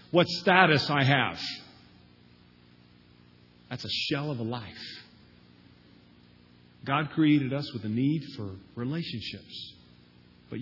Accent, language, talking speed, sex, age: American, English, 105 wpm, male, 40-59